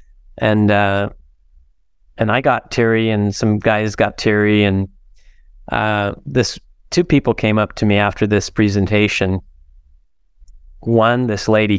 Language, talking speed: English, 130 wpm